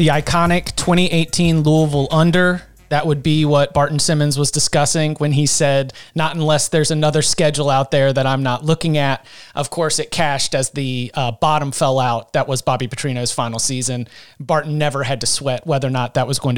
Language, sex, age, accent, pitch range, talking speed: English, male, 30-49, American, 140-175 Hz, 200 wpm